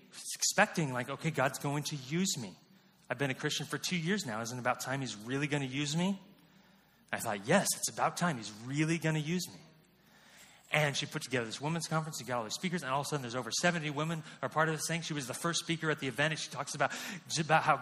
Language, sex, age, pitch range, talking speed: English, male, 30-49, 145-185 Hz, 270 wpm